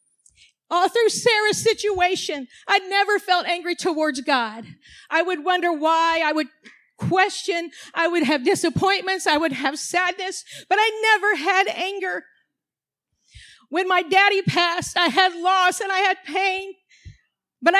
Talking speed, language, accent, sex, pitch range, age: 140 wpm, English, American, female, 370-430 Hz, 40-59